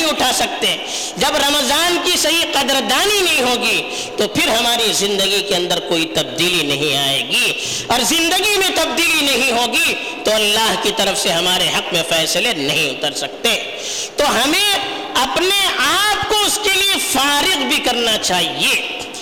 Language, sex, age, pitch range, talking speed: Urdu, female, 50-69, 245-345 Hz, 120 wpm